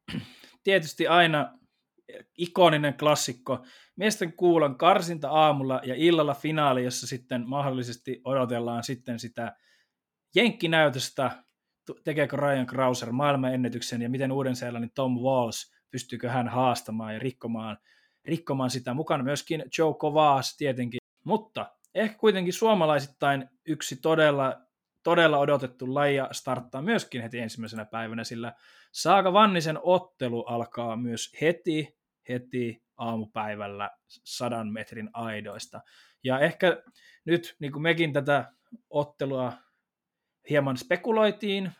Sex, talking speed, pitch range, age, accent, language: male, 110 wpm, 125-160 Hz, 20-39, native, Finnish